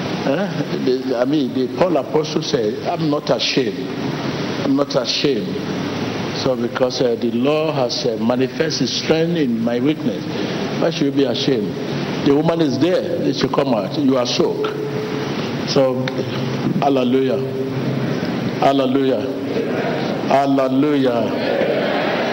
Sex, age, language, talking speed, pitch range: male, 60-79, English, 120 wpm, 130-155 Hz